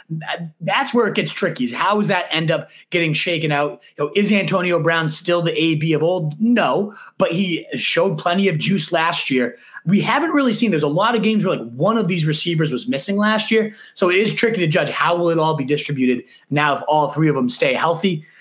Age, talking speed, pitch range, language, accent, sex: 30-49, 235 wpm, 150-200 Hz, English, American, male